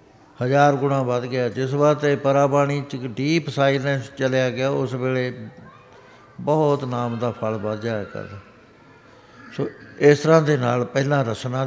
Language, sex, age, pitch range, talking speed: Punjabi, male, 60-79, 125-140 Hz, 140 wpm